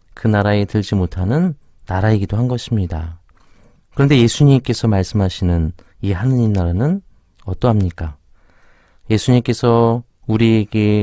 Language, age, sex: Korean, 40-59, male